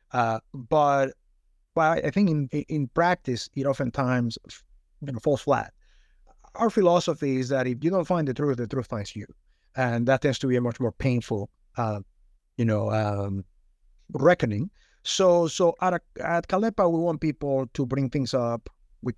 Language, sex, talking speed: English, male, 175 wpm